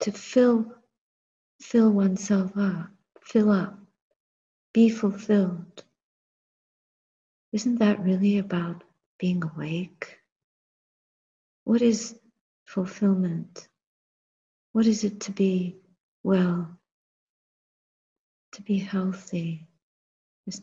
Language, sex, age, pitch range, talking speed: English, female, 50-69, 180-210 Hz, 80 wpm